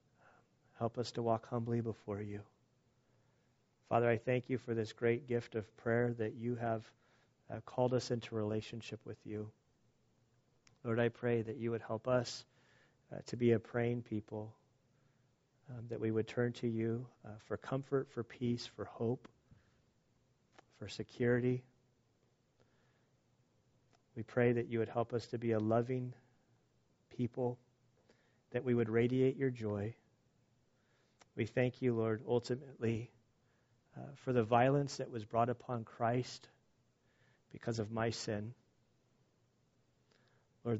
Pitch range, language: 110-125 Hz, English